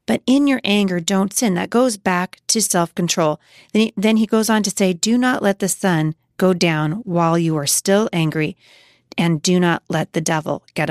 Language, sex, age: English, female, 30-49